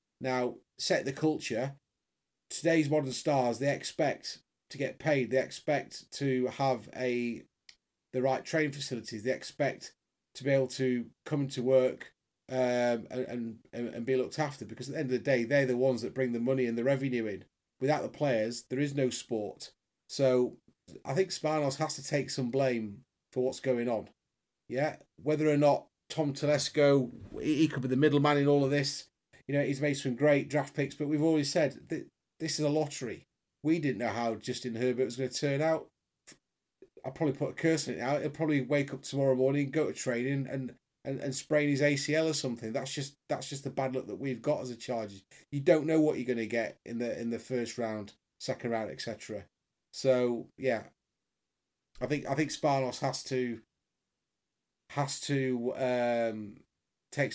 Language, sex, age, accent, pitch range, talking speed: English, male, 30-49, British, 125-145 Hz, 195 wpm